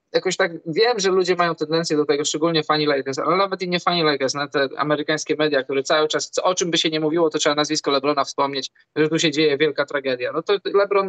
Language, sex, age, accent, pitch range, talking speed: Polish, male, 20-39, native, 140-175 Hz, 245 wpm